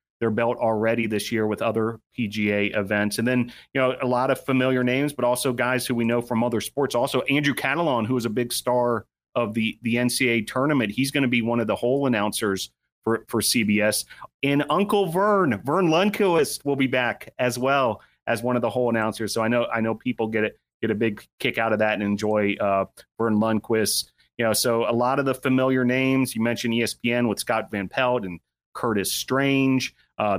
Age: 30-49